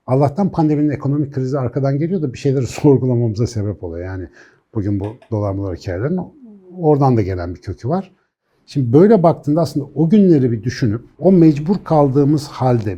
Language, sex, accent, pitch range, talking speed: Turkish, male, native, 110-160 Hz, 160 wpm